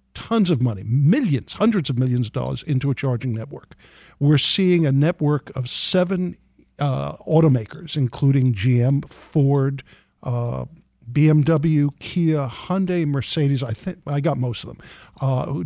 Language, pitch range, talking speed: English, 125-160 Hz, 140 wpm